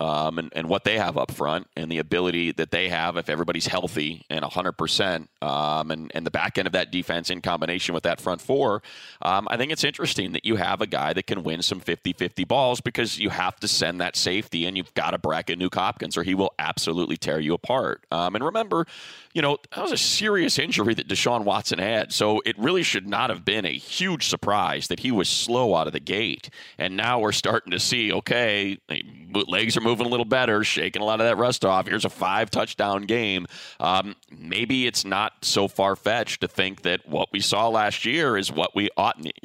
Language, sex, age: English, male, 30-49